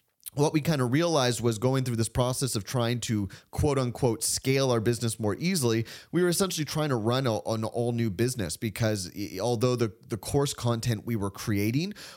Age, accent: 30-49, American